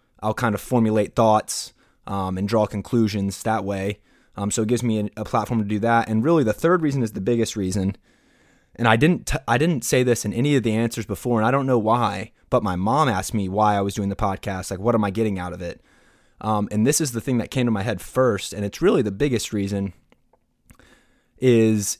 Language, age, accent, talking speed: English, 20-39, American, 240 wpm